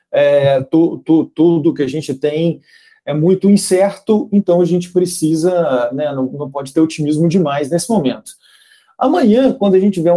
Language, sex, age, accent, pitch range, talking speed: Portuguese, male, 40-59, Brazilian, 160-230 Hz, 170 wpm